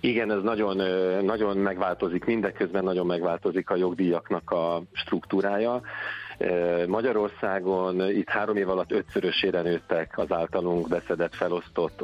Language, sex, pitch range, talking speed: Hungarian, male, 90-100 Hz, 115 wpm